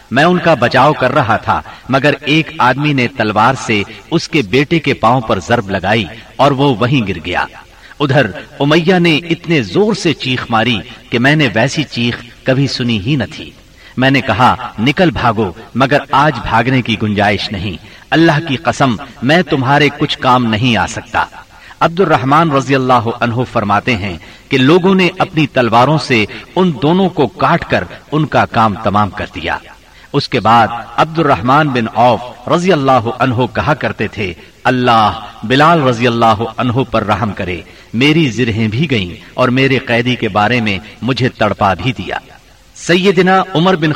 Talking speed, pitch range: 155 wpm, 110-145 Hz